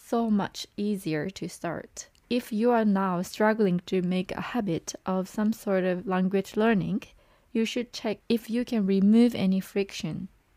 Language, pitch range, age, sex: Japanese, 185-220 Hz, 20-39, female